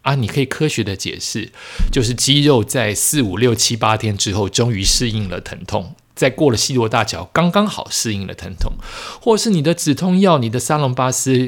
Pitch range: 110-160 Hz